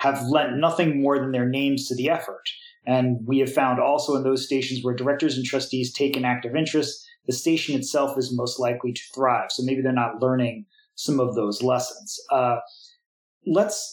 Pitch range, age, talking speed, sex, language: 130-155 Hz, 30-49, 195 wpm, male, English